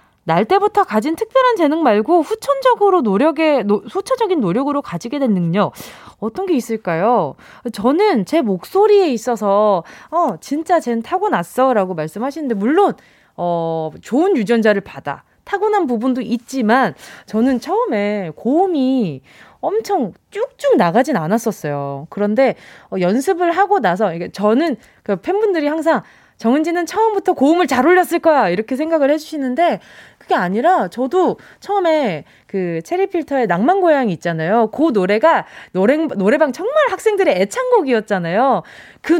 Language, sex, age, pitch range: Korean, female, 20-39, 210-355 Hz